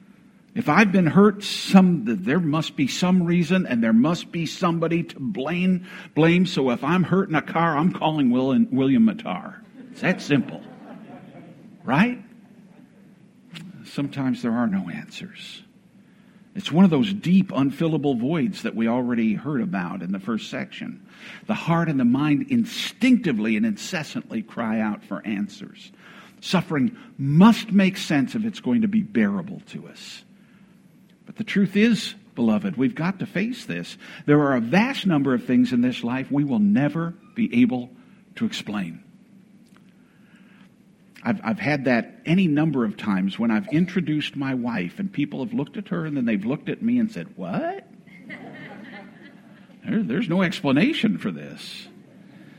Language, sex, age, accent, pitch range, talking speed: English, male, 60-79, American, 175-225 Hz, 160 wpm